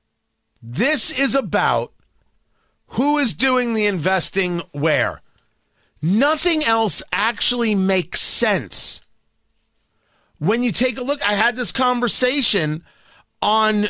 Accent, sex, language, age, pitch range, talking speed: American, male, English, 40-59, 175-245 Hz, 105 wpm